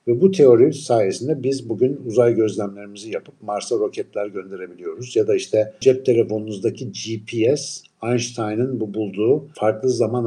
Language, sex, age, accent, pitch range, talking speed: Turkish, male, 60-79, native, 105-130 Hz, 135 wpm